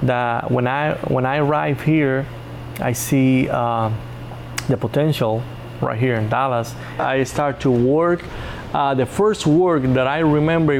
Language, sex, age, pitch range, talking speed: English, male, 20-39, 115-135 Hz, 150 wpm